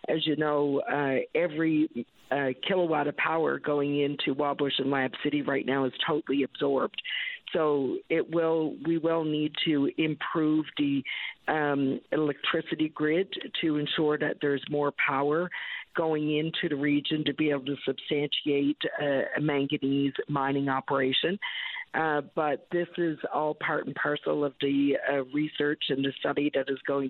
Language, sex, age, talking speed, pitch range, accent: English, female, 50-69, 155 wpm, 140-160 Hz, American